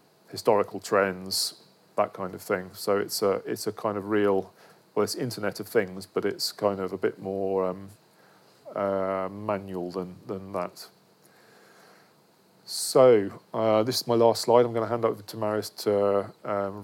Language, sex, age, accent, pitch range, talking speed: English, male, 40-59, British, 95-110 Hz, 170 wpm